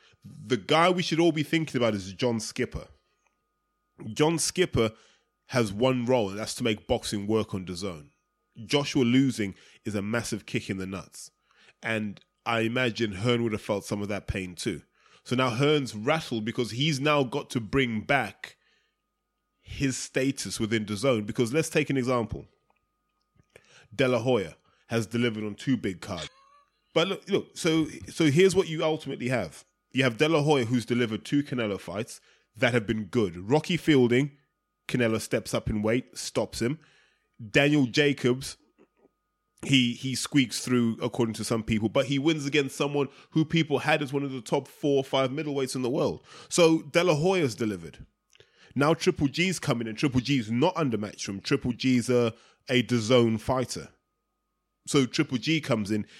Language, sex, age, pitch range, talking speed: English, male, 20-39, 110-145 Hz, 170 wpm